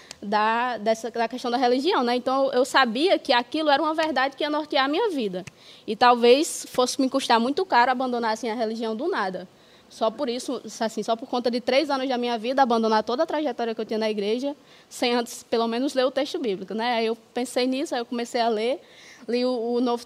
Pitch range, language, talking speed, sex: 235-300 Hz, Portuguese, 235 wpm, female